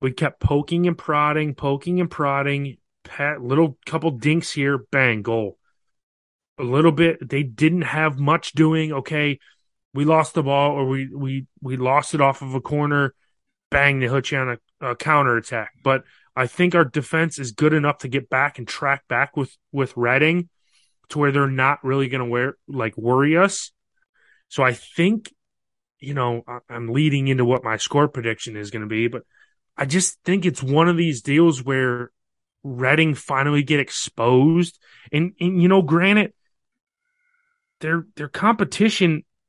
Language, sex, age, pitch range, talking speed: English, male, 30-49, 130-165 Hz, 170 wpm